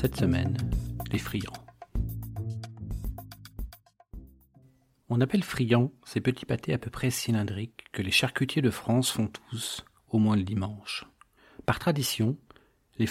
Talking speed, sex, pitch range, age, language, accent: 130 wpm, male, 105-130 Hz, 40-59, French, French